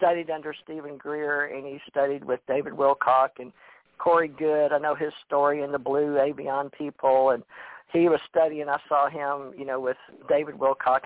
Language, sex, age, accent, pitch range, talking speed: English, male, 50-69, American, 140-165 Hz, 185 wpm